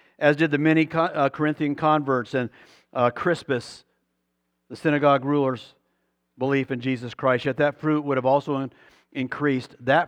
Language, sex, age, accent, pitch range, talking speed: English, male, 50-69, American, 125-165 Hz, 135 wpm